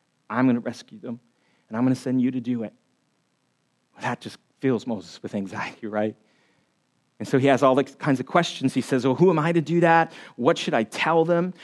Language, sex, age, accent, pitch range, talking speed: English, male, 40-59, American, 120-195 Hz, 220 wpm